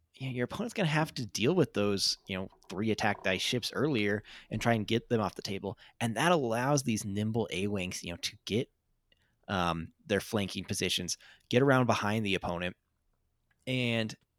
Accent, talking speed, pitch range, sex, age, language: American, 190 wpm, 95-125 Hz, male, 20-39, English